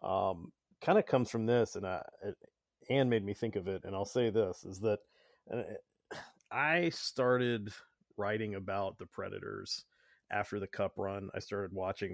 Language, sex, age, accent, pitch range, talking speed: English, male, 40-59, American, 95-120 Hz, 165 wpm